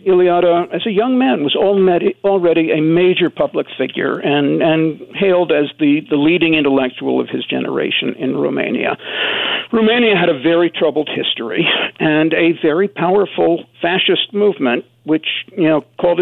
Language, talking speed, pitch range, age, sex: English, 150 wpm, 145-185 Hz, 60-79, male